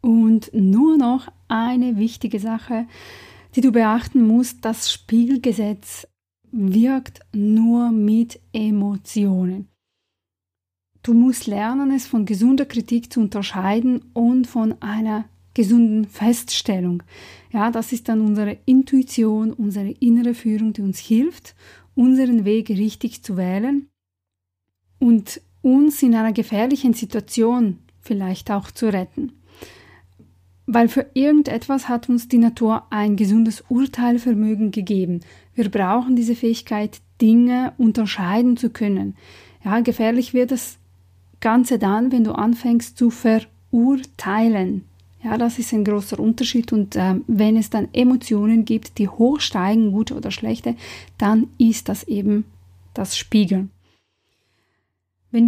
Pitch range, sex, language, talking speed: 205-240 Hz, female, German, 120 wpm